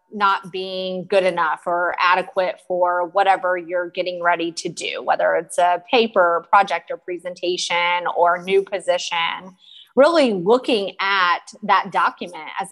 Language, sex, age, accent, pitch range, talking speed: English, female, 30-49, American, 180-230 Hz, 135 wpm